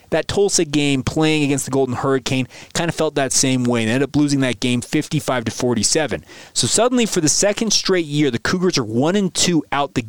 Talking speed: 225 wpm